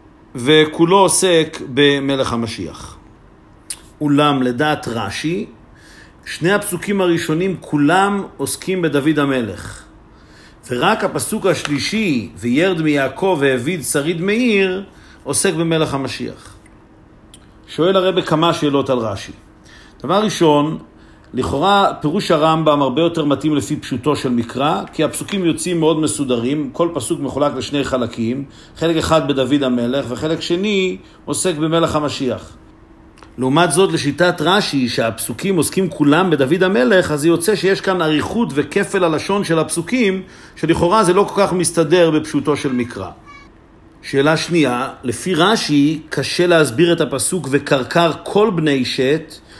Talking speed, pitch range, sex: 120 wpm, 130-175 Hz, male